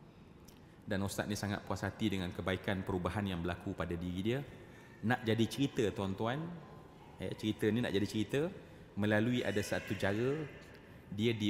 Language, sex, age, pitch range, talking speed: Malay, male, 30-49, 100-115 Hz, 150 wpm